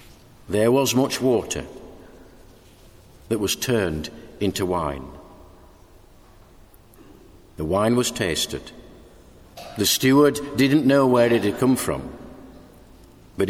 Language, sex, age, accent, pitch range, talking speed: English, male, 60-79, British, 95-130 Hz, 100 wpm